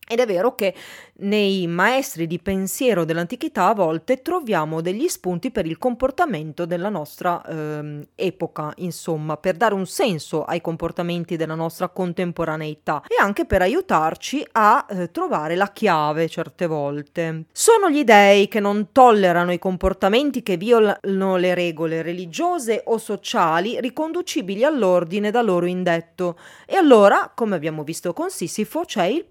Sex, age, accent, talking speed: female, 30-49, native, 145 wpm